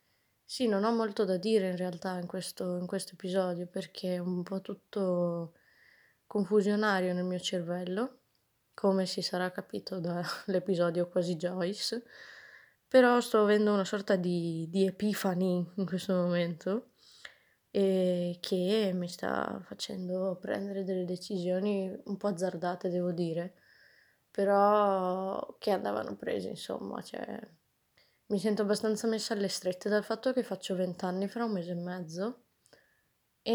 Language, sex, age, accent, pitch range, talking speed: Italian, female, 20-39, native, 180-205 Hz, 135 wpm